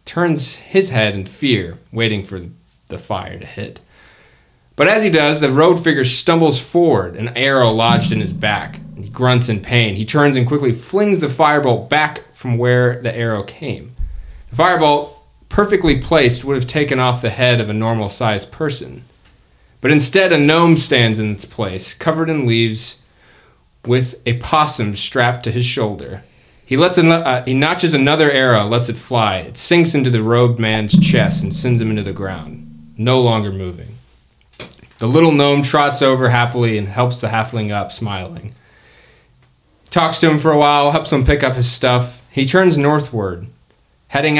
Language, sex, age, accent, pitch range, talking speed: English, male, 30-49, American, 110-150 Hz, 175 wpm